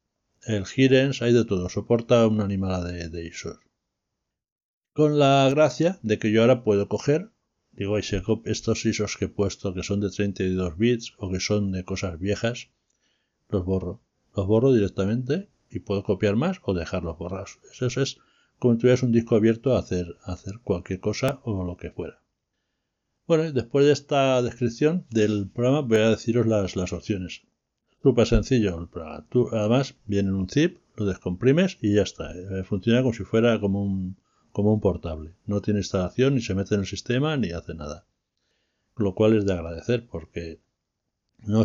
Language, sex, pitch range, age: Spanish, male, 95-130 Hz, 60-79